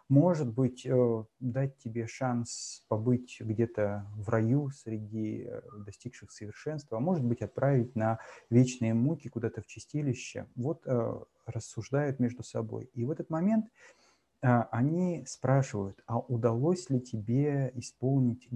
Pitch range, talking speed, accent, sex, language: 115-135 Hz, 115 wpm, native, male, Russian